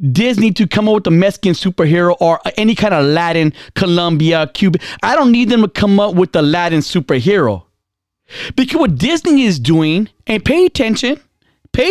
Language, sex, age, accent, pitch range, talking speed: English, male, 30-49, American, 170-265 Hz, 175 wpm